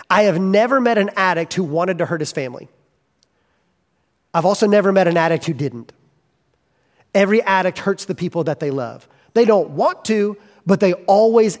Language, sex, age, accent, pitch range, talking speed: English, male, 30-49, American, 165-225 Hz, 180 wpm